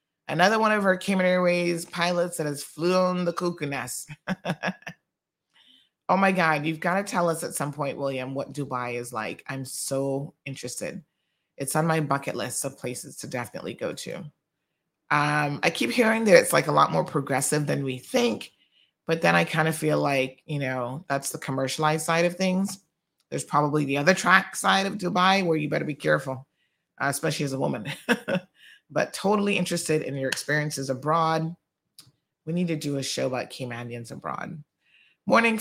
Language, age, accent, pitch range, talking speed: English, 30-49, American, 145-180 Hz, 180 wpm